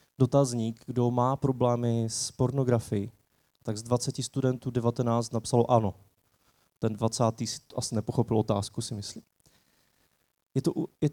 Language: Czech